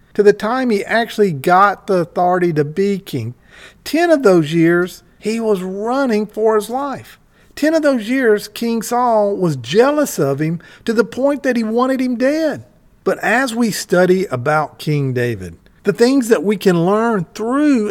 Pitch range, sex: 175-240 Hz, male